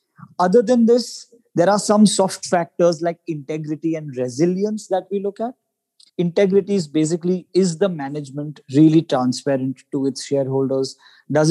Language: English